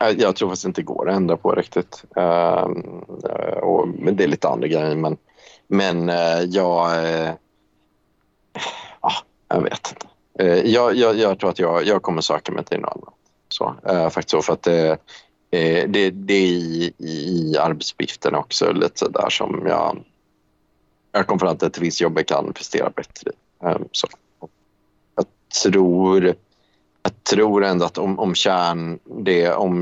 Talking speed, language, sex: 160 wpm, Swedish, male